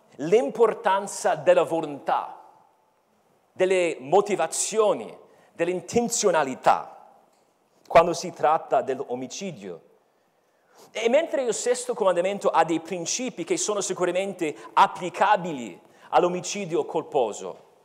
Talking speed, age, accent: 80 wpm, 40-59, native